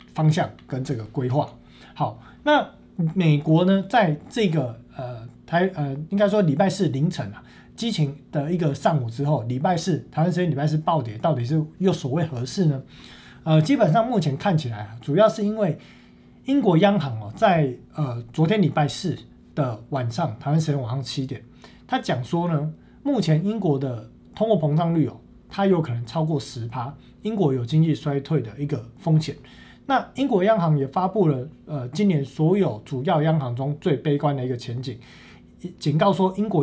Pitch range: 135-175 Hz